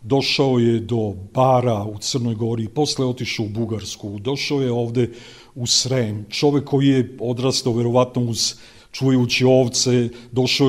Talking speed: 145 wpm